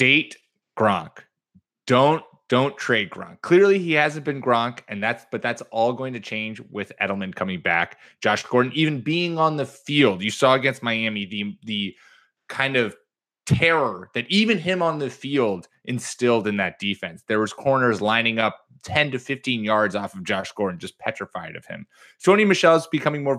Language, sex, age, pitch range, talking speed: English, male, 20-39, 110-145 Hz, 180 wpm